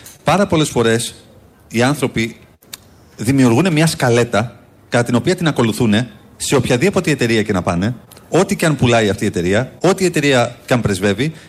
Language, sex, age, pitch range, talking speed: Greek, male, 30-49, 105-145 Hz, 165 wpm